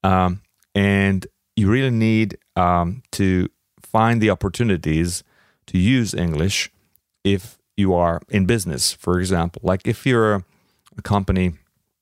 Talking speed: 125 wpm